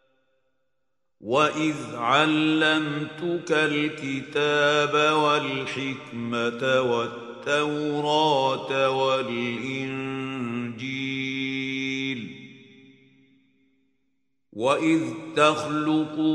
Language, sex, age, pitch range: Indonesian, male, 50-69, 130-150 Hz